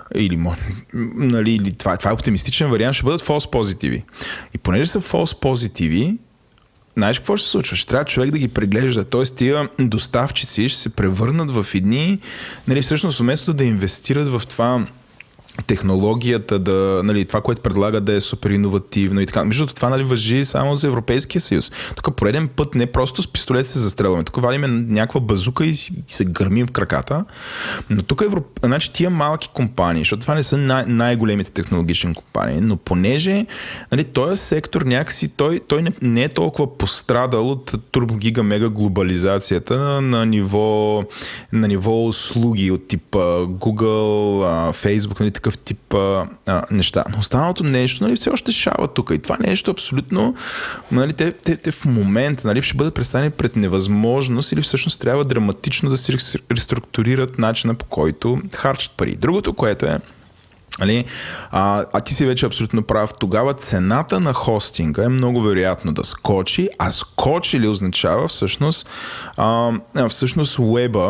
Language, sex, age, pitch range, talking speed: Bulgarian, male, 20-39, 105-135 Hz, 160 wpm